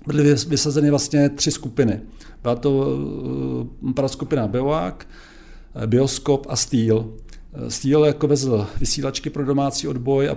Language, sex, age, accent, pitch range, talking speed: Czech, male, 50-69, native, 120-140 Hz, 115 wpm